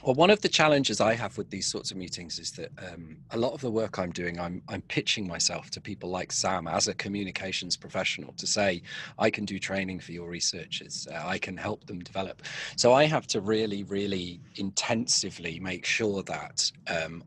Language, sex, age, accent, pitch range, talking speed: English, male, 30-49, British, 95-110 Hz, 205 wpm